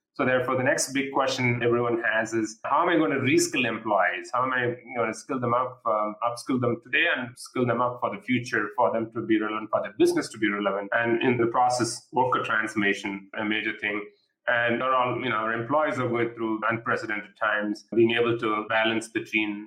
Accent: Indian